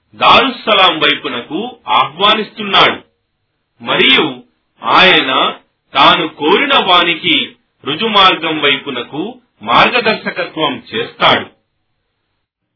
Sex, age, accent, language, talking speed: male, 40-59, native, Telugu, 45 wpm